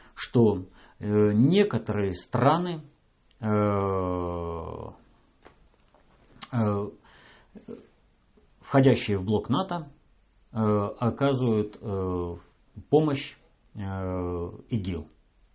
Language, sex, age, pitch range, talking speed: Russian, male, 50-69, 95-130 Hz, 40 wpm